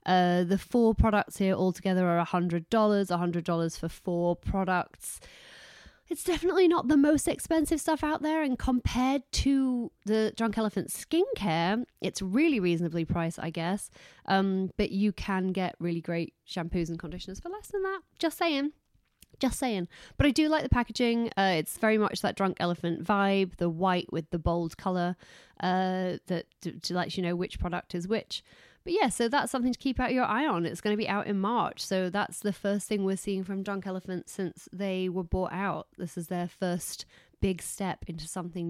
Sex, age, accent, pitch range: female, 30-49, British, 180-240 Hz